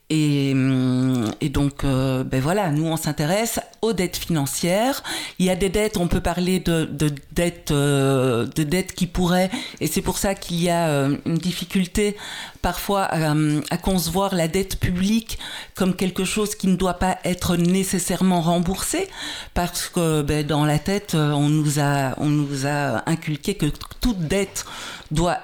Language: French